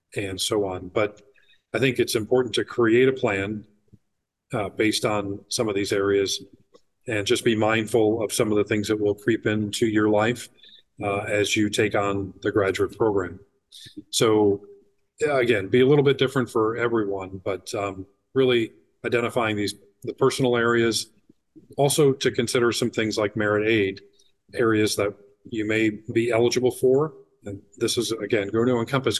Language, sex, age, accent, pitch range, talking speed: English, male, 40-59, American, 100-120 Hz, 165 wpm